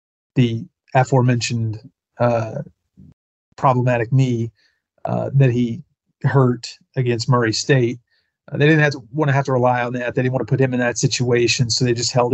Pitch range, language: 115-135 Hz, English